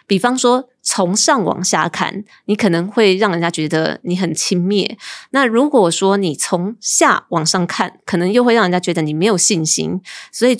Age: 20-39